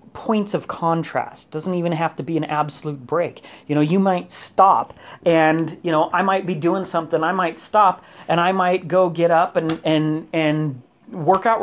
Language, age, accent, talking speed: English, 30-49, American, 195 wpm